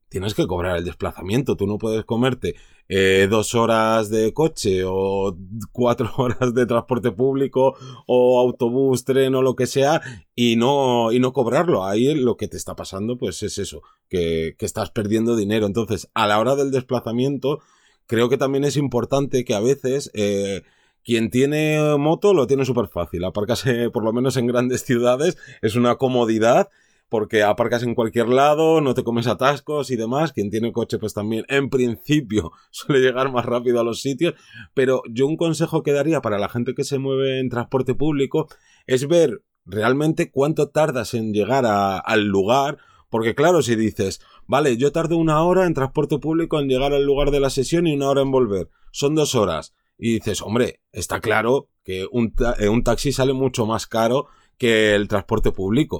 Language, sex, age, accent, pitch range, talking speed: Spanish, male, 30-49, Spanish, 110-135 Hz, 185 wpm